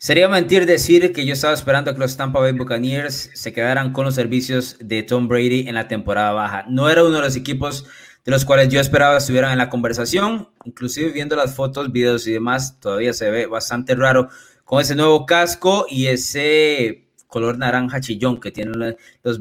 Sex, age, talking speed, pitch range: male, 20-39, 195 wpm, 130-170 Hz